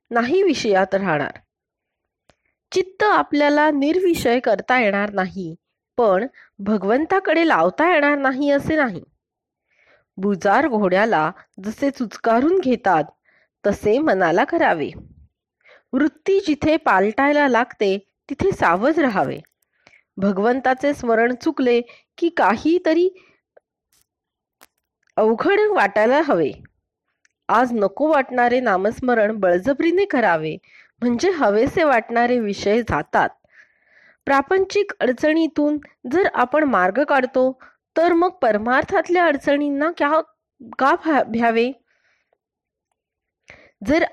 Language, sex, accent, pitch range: Marathi, female, native, 215-310 Hz